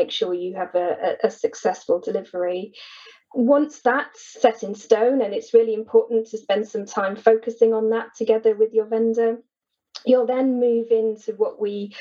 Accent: British